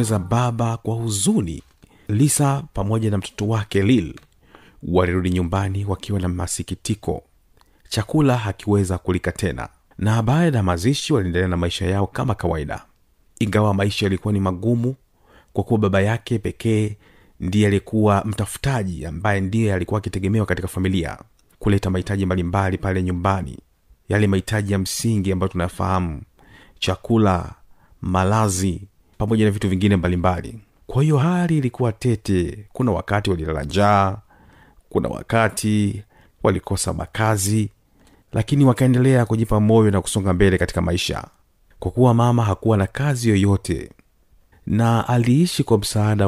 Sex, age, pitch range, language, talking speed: male, 40-59, 95-115 Hz, Swahili, 130 wpm